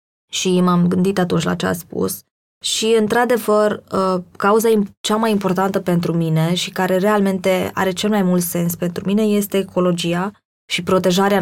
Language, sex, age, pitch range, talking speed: Romanian, female, 20-39, 180-215 Hz, 165 wpm